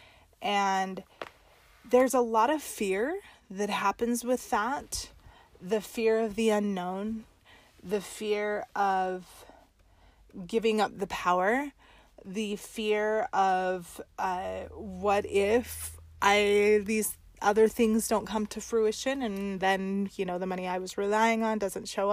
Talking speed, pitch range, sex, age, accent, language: 130 wpm, 185-220 Hz, female, 30-49, American, English